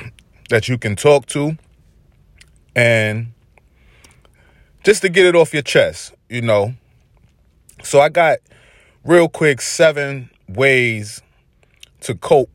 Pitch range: 105-135 Hz